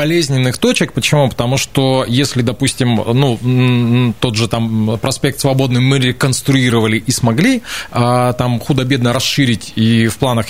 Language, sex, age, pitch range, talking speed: Russian, male, 20-39, 115-145 Hz, 130 wpm